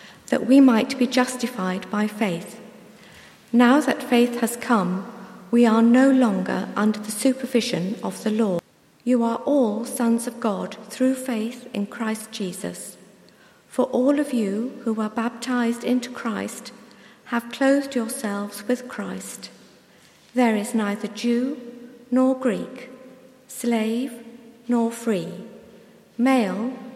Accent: British